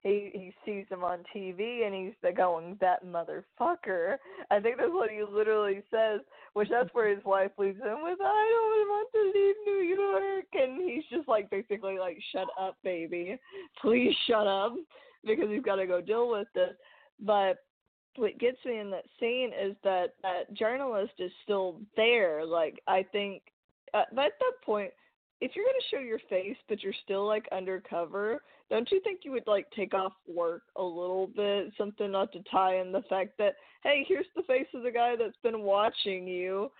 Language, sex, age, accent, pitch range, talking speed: English, female, 20-39, American, 185-250 Hz, 190 wpm